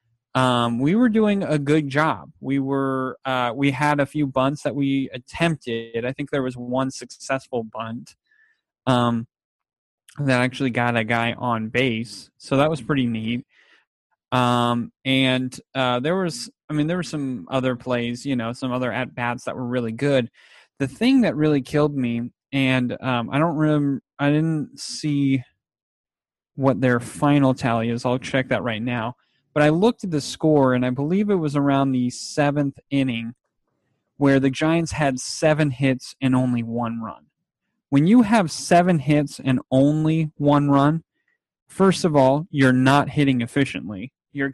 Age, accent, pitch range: 30-49, American, 125-150 Hz